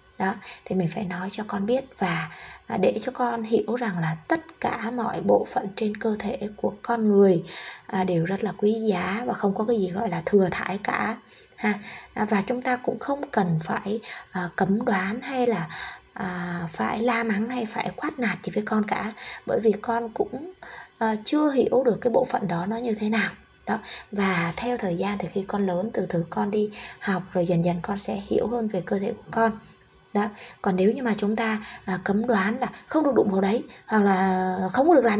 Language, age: Vietnamese, 20-39